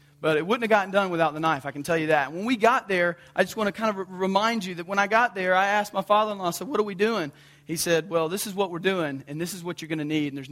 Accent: American